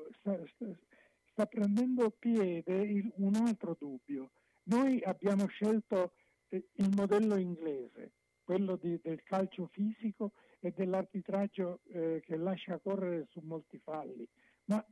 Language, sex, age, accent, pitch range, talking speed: Italian, male, 60-79, native, 170-210 Hz, 110 wpm